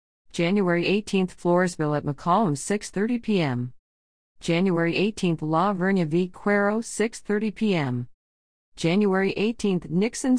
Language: English